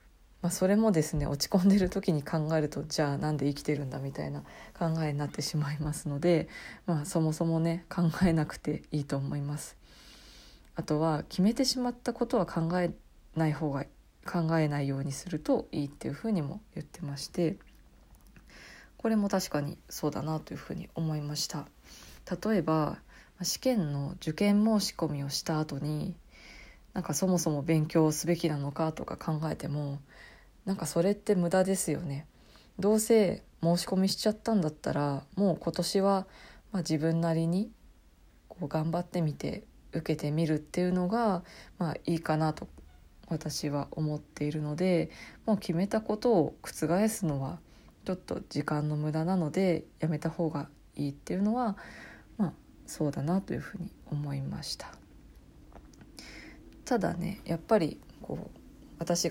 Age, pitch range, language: 20-39, 150-185 Hz, Japanese